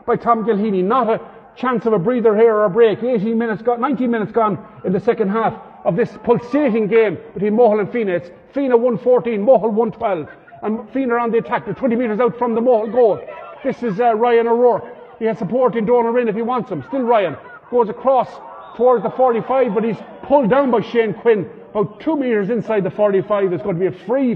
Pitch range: 185-230 Hz